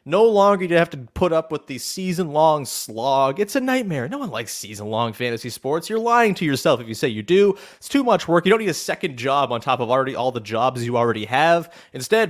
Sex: male